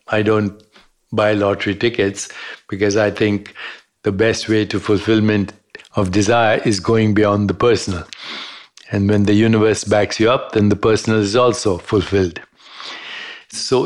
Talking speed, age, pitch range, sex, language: 145 wpm, 60-79, 105-115 Hz, male, English